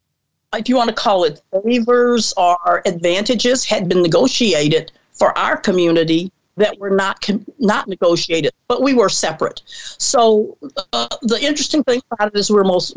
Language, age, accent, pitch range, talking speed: English, 50-69, American, 185-225 Hz, 160 wpm